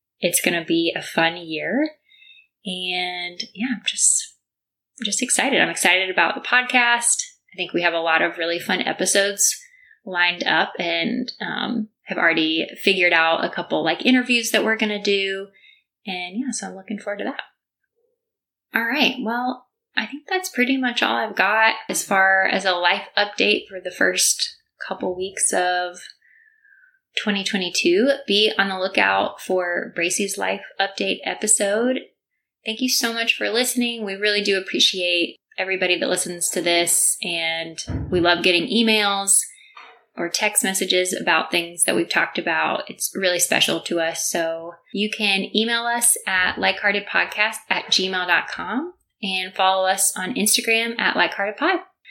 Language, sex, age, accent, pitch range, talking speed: English, female, 20-39, American, 180-245 Hz, 155 wpm